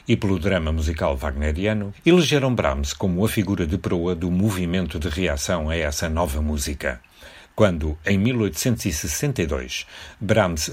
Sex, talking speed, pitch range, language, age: male, 135 wpm, 80-100 Hz, Portuguese, 60-79